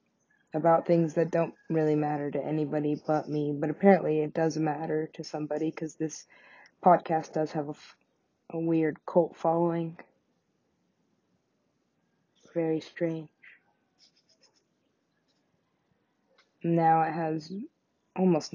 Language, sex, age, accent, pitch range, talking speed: English, female, 20-39, American, 150-165 Hz, 105 wpm